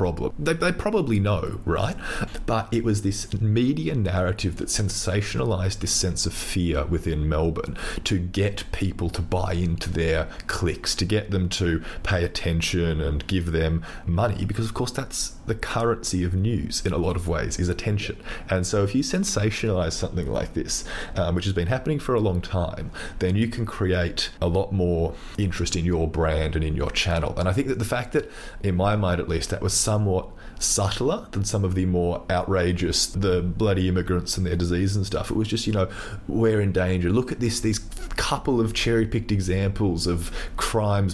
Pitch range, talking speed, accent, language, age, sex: 90-110 Hz, 195 wpm, Australian, English, 30-49, male